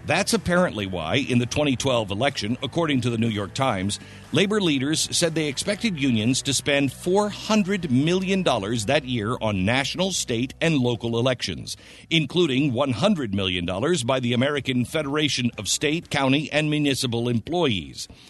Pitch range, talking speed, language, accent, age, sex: 110-155 Hz, 145 wpm, English, American, 50-69, male